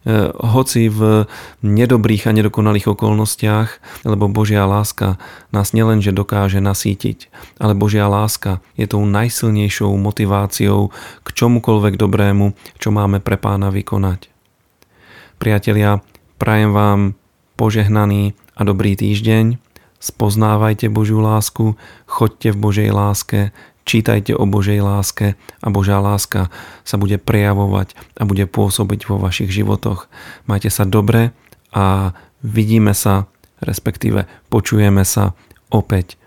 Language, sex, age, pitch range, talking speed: Slovak, male, 40-59, 95-110 Hz, 115 wpm